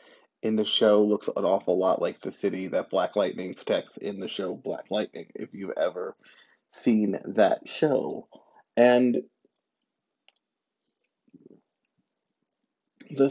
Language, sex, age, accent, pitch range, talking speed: English, male, 30-49, American, 105-140 Hz, 120 wpm